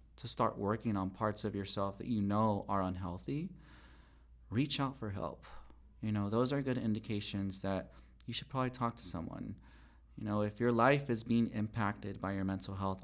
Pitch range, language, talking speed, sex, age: 95-115 Hz, English, 190 wpm, male, 30-49